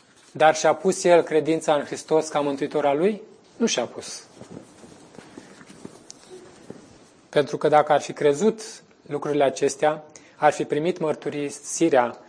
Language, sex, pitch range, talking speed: Romanian, male, 135-155 Hz, 120 wpm